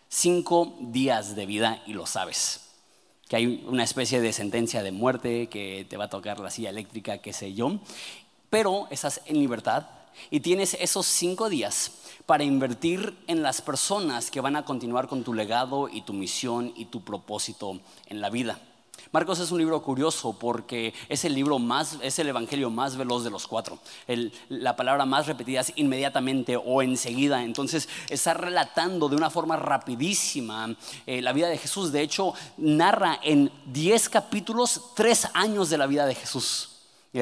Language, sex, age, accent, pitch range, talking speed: Spanish, male, 30-49, Mexican, 120-170 Hz, 175 wpm